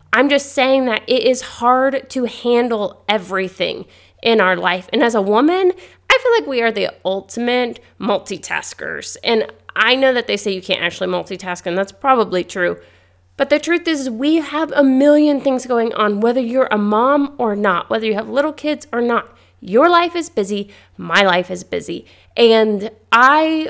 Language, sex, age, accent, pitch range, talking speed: English, female, 30-49, American, 200-260 Hz, 185 wpm